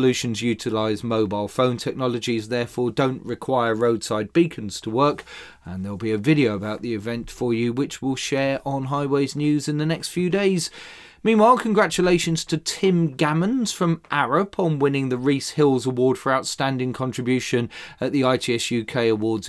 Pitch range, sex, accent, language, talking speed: 115-155 Hz, male, British, English, 165 wpm